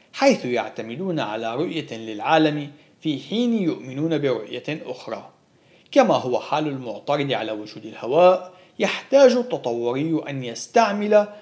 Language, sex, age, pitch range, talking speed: Arabic, male, 40-59, 135-210 Hz, 110 wpm